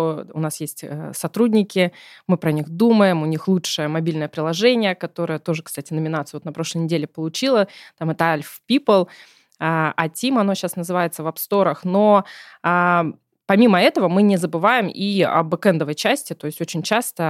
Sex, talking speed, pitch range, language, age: female, 170 wpm, 160-205 Hz, Russian, 20-39